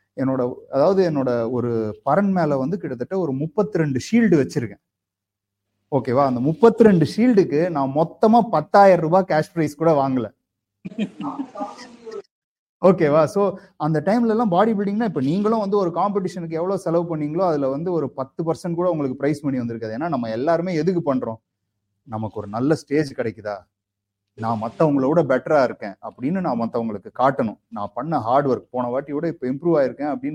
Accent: Indian